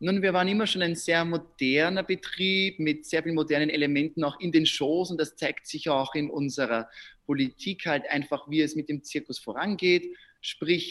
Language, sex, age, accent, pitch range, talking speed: German, male, 30-49, German, 145-180 Hz, 195 wpm